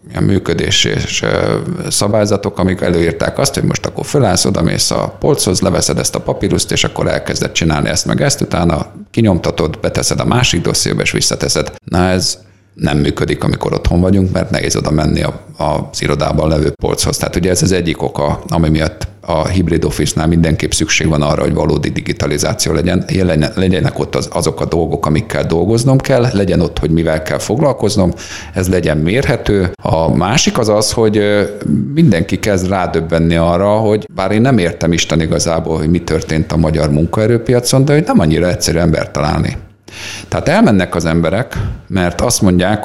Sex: male